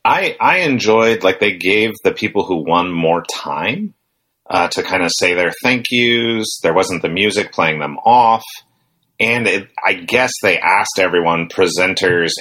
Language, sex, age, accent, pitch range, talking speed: English, male, 30-49, American, 90-130 Hz, 165 wpm